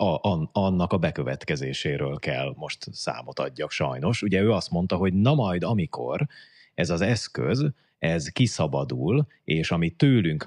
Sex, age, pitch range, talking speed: male, 30-49, 80-120 Hz, 140 wpm